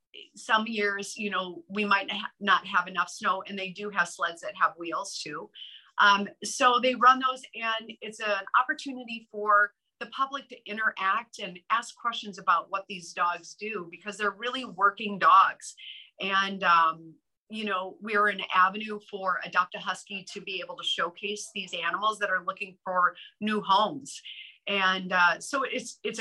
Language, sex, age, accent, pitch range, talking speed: English, female, 30-49, American, 180-220 Hz, 165 wpm